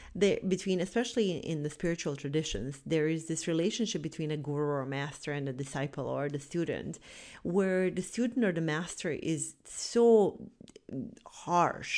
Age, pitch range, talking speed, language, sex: 40-59, 150-190 Hz, 155 wpm, English, female